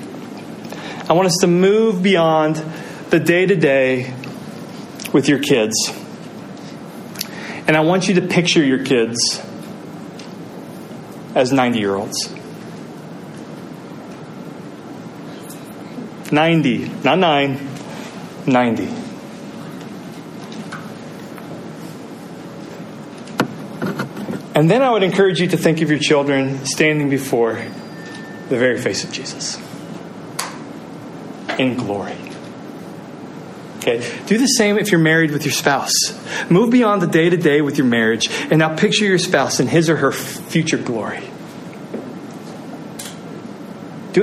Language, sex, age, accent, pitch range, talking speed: English, male, 30-49, American, 140-195 Hz, 105 wpm